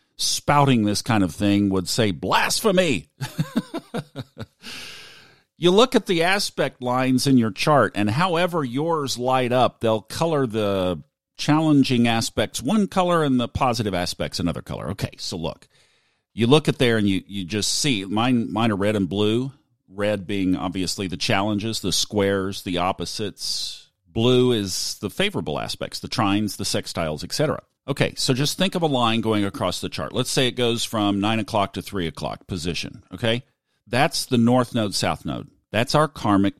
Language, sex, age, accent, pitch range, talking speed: English, male, 40-59, American, 100-135 Hz, 170 wpm